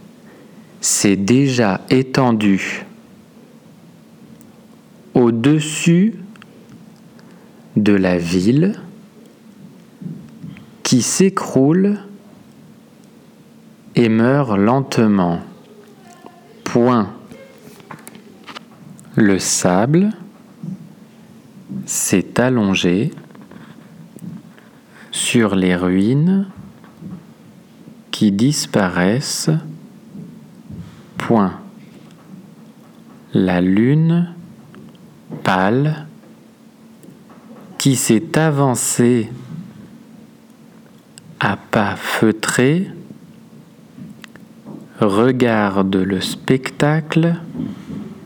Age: 40-59